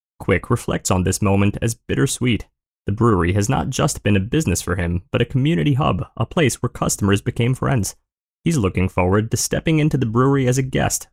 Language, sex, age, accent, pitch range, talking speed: English, male, 20-39, American, 95-135 Hz, 205 wpm